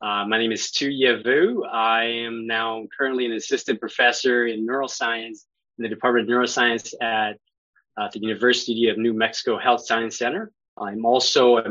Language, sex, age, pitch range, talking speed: English, male, 20-39, 110-120 Hz, 170 wpm